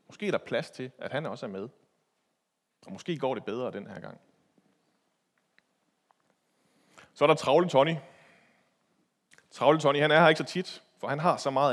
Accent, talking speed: native, 185 wpm